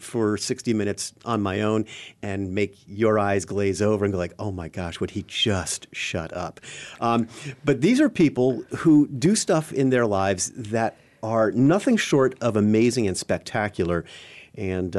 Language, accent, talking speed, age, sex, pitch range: English, American, 170 wpm, 40-59, male, 100-130 Hz